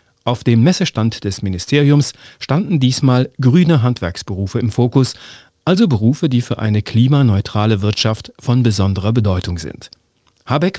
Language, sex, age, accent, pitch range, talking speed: German, male, 40-59, German, 105-135 Hz, 130 wpm